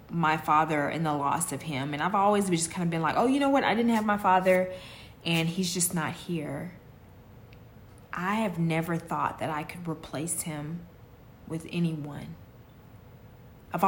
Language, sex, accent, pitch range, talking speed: English, female, American, 155-190 Hz, 175 wpm